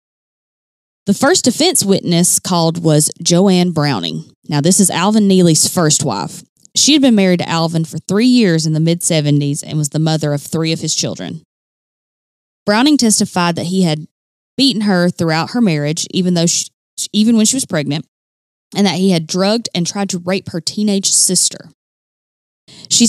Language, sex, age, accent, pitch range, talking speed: English, female, 20-39, American, 155-205 Hz, 175 wpm